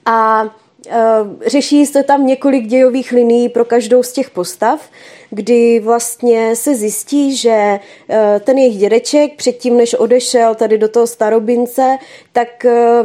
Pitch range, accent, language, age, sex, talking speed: 210-240 Hz, native, Czech, 20-39, female, 140 wpm